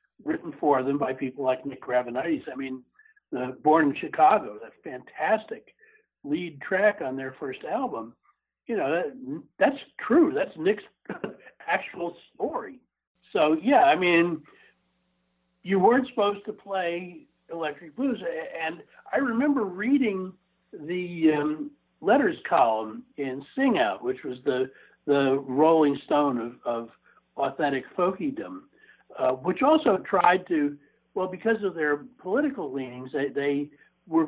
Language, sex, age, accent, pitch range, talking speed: English, male, 60-79, American, 140-235 Hz, 130 wpm